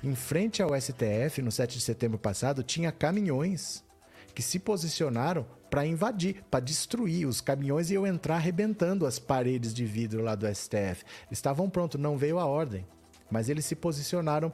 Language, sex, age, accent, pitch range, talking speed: Portuguese, male, 40-59, Brazilian, 120-160 Hz, 170 wpm